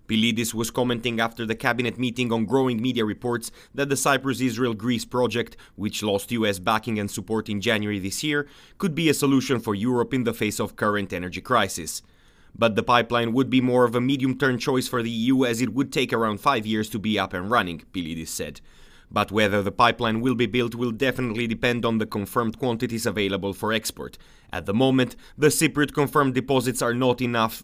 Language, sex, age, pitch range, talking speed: English, male, 30-49, 105-125 Hz, 200 wpm